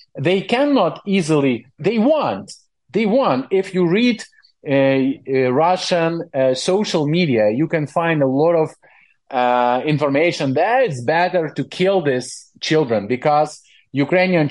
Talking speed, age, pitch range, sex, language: 135 wpm, 40-59, 135-185 Hz, male, English